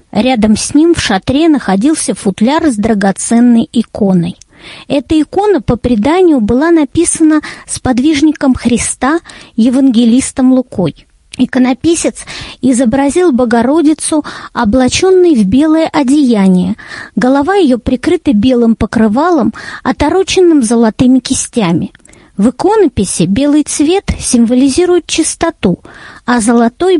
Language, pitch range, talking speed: Russian, 235-310 Hz, 100 wpm